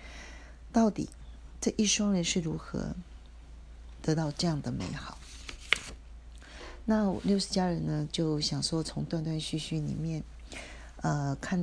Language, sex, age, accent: Chinese, female, 40-59, native